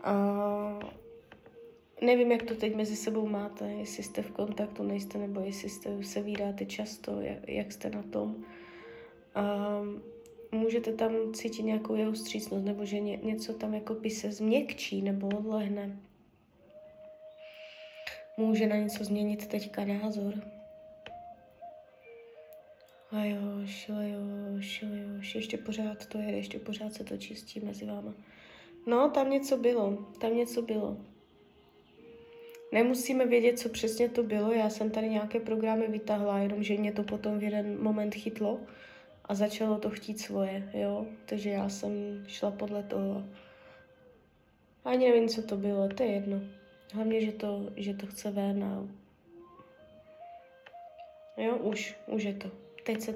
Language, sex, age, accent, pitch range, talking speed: Czech, female, 20-39, native, 200-230 Hz, 135 wpm